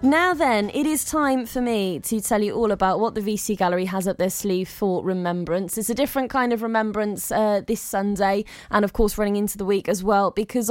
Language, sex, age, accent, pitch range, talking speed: English, female, 20-39, British, 190-250 Hz, 230 wpm